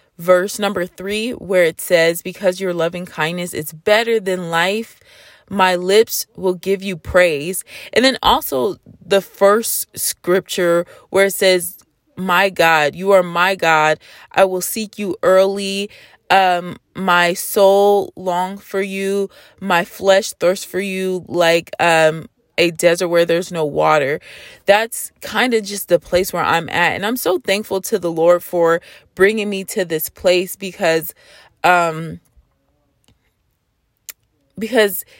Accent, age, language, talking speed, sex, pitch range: American, 20-39, English, 145 wpm, female, 175-205 Hz